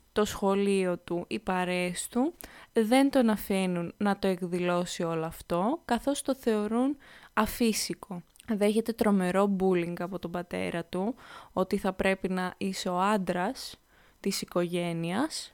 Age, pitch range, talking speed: 20-39, 185-240 Hz, 130 wpm